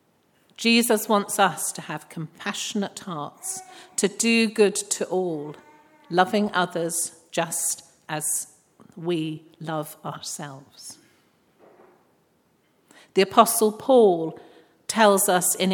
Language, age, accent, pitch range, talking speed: English, 50-69, British, 165-215 Hz, 95 wpm